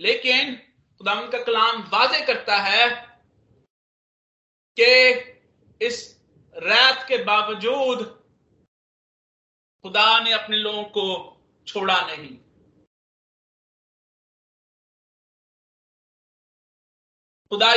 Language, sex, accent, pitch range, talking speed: Hindi, male, native, 230-275 Hz, 70 wpm